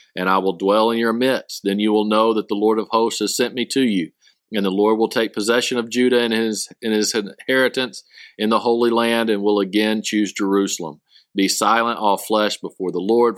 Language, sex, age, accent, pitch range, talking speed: English, male, 50-69, American, 95-125 Hz, 225 wpm